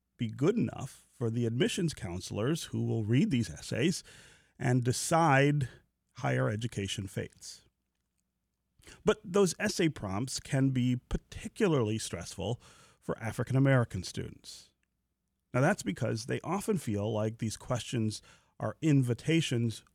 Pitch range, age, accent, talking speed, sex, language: 110-150 Hz, 40-59, American, 115 wpm, male, English